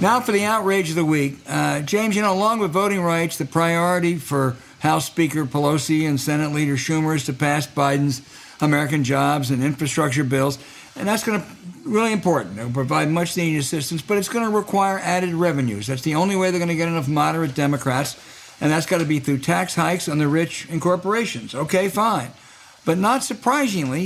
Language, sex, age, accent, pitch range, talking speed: English, male, 60-79, American, 150-195 Hz, 205 wpm